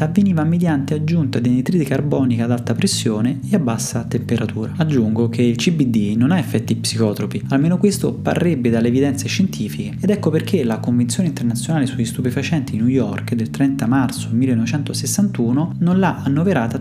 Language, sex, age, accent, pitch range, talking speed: Italian, male, 20-39, native, 120-155 Hz, 160 wpm